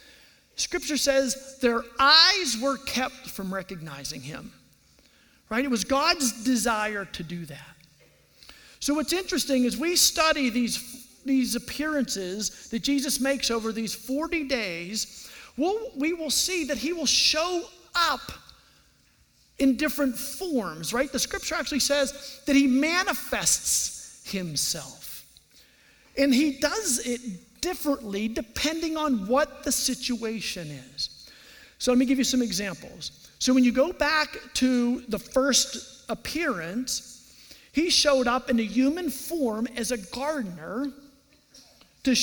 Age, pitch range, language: 40-59, 225-285 Hz, English